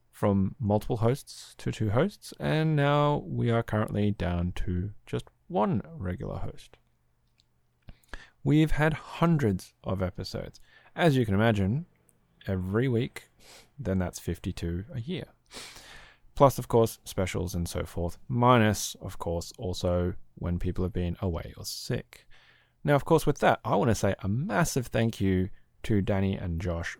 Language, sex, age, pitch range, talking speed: English, male, 20-39, 90-115 Hz, 150 wpm